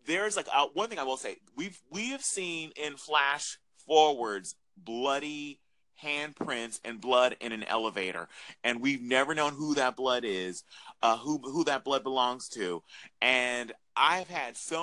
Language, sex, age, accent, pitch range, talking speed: English, male, 30-49, American, 130-175 Hz, 165 wpm